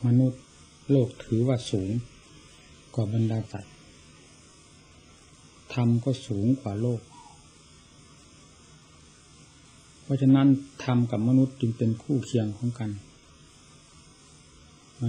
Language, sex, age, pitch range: Thai, male, 60-79, 105-130 Hz